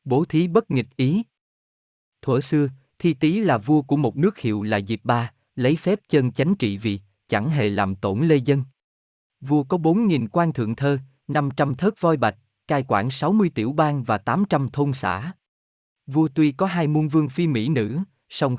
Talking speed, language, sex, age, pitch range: 205 wpm, Vietnamese, male, 20-39, 115-160 Hz